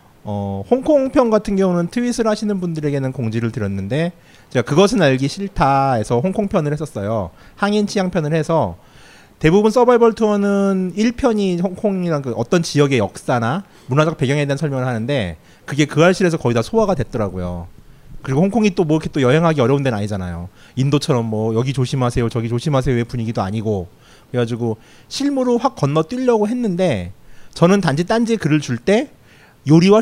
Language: Korean